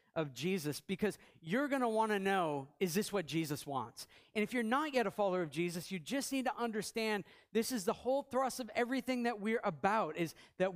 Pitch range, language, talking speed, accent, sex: 165-235 Hz, English, 225 wpm, American, male